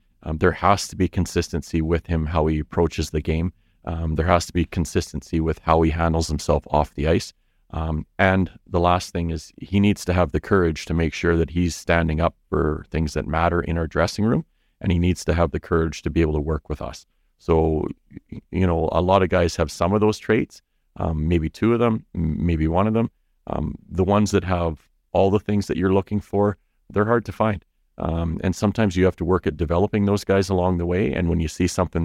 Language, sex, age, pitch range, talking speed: English, male, 40-59, 80-95 Hz, 230 wpm